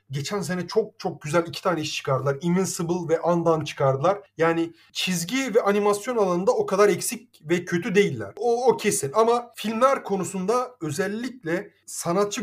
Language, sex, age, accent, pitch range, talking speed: Turkish, male, 30-49, native, 155-205 Hz, 155 wpm